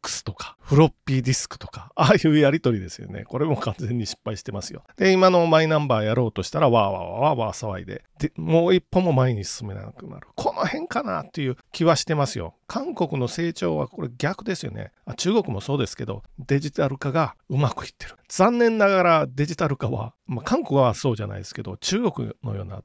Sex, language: male, Japanese